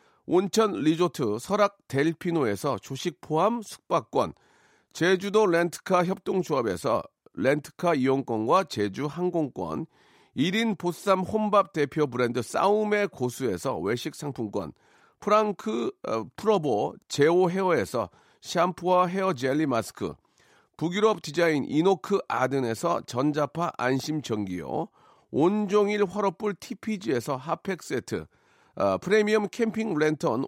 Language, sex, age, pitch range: Korean, male, 40-59, 145-205 Hz